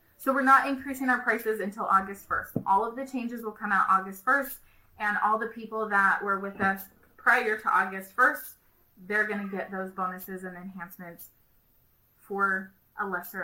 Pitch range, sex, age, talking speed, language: 185-220 Hz, female, 20-39, 180 wpm, English